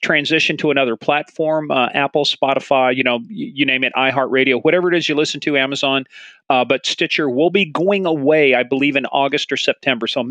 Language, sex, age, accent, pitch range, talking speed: English, male, 40-59, American, 140-190 Hz, 215 wpm